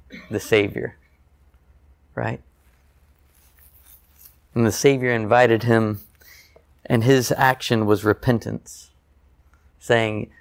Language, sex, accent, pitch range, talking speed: English, male, American, 75-120 Hz, 80 wpm